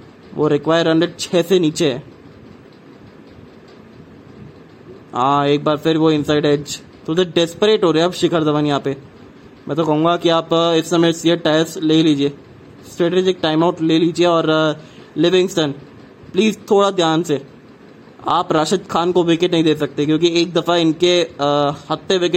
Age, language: 20-39, English